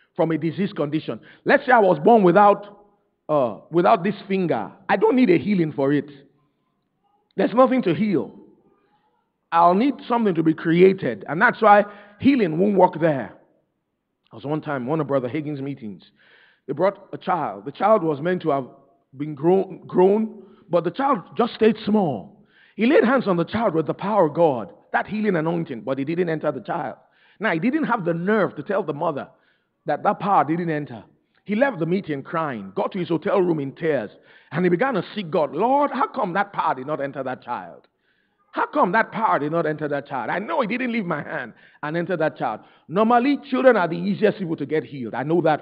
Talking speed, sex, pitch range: 210 wpm, male, 155-210 Hz